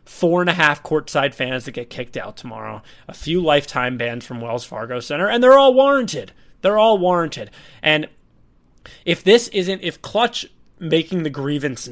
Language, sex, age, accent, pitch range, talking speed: English, male, 20-39, American, 130-170 Hz, 175 wpm